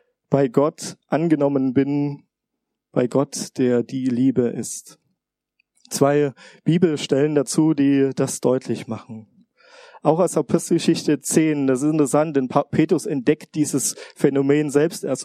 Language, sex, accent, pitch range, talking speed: German, male, German, 130-165 Hz, 120 wpm